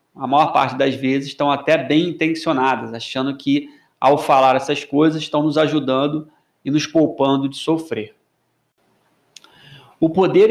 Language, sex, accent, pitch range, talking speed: Portuguese, male, Brazilian, 145-185 Hz, 145 wpm